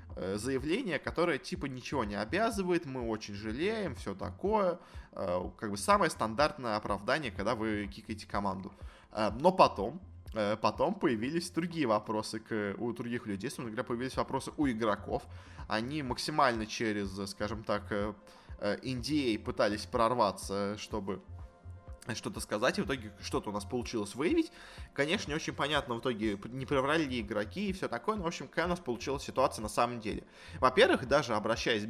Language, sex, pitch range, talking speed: Russian, male, 105-135 Hz, 145 wpm